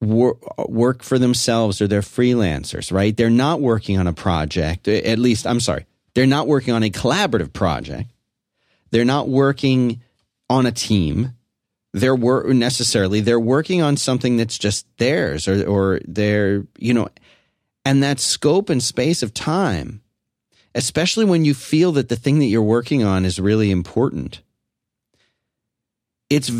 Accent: American